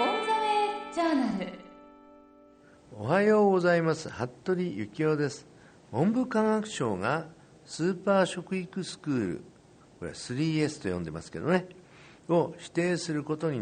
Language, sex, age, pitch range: Japanese, male, 50-69, 115-165 Hz